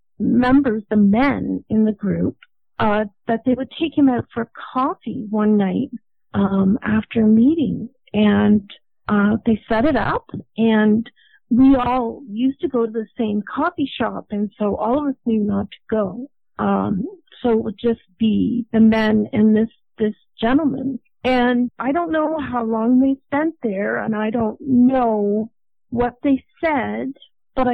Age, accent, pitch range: 50-69, American, 215-260 Hz